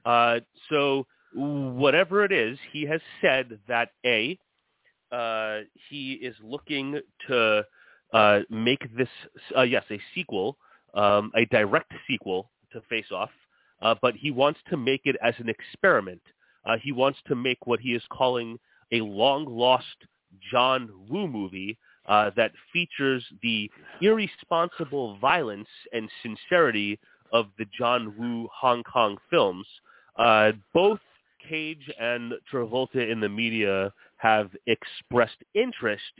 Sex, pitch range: male, 105-135 Hz